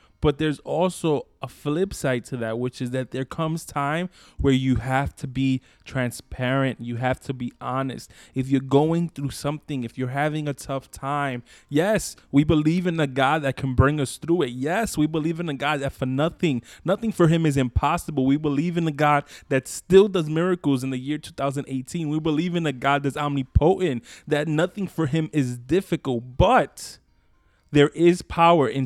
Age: 20-39